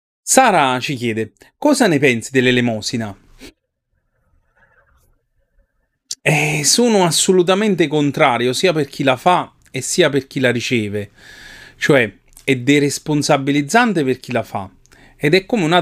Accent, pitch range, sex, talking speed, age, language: native, 110-145 Hz, male, 130 wpm, 30-49, Italian